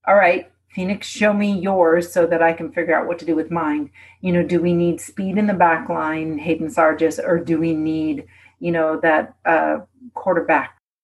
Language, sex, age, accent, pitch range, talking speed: English, female, 40-59, American, 165-200 Hz, 205 wpm